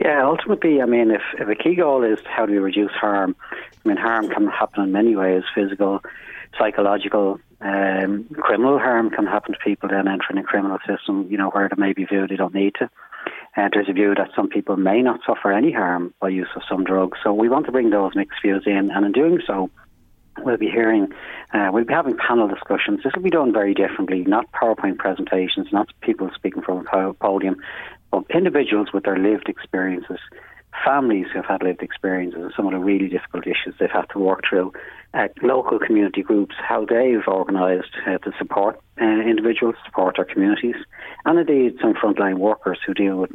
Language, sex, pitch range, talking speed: English, male, 95-105 Hz, 205 wpm